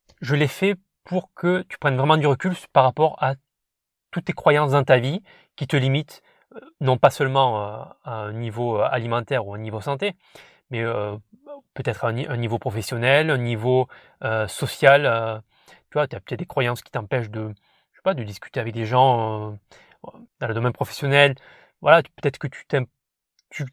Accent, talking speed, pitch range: French, 175 wpm, 125-155 Hz